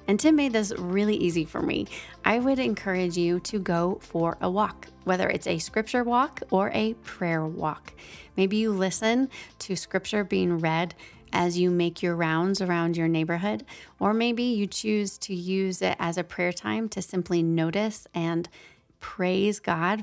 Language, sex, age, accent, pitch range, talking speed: English, female, 30-49, American, 170-210 Hz, 175 wpm